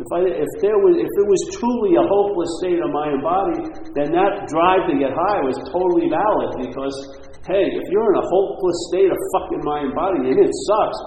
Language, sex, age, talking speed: English, male, 50-69, 215 wpm